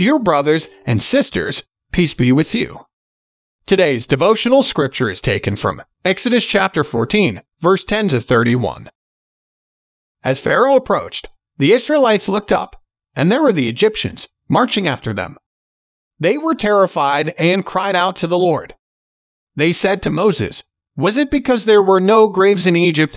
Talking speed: 150 wpm